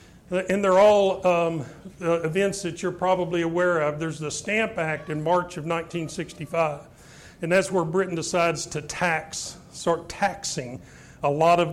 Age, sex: 40-59, male